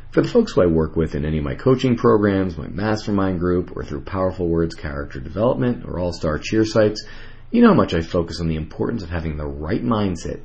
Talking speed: 230 wpm